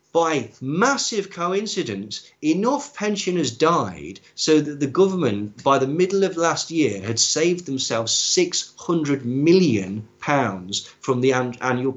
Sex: male